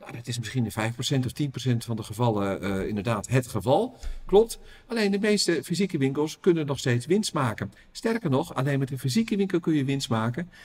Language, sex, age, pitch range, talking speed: English, male, 50-69, 130-175 Hz, 205 wpm